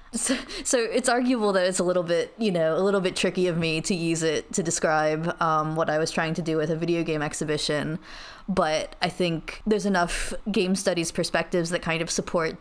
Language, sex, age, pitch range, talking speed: English, female, 20-39, 165-205 Hz, 220 wpm